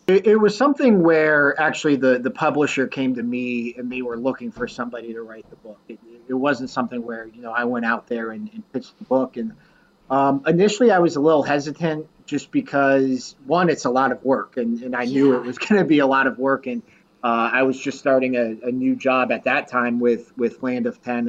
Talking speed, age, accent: 235 wpm, 30-49, American